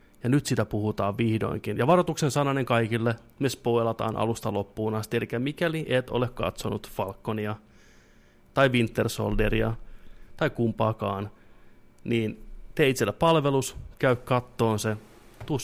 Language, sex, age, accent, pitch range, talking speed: Finnish, male, 30-49, native, 110-130 Hz, 125 wpm